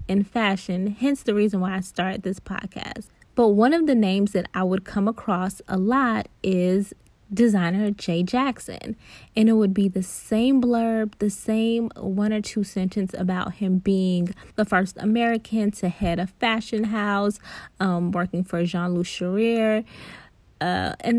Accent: American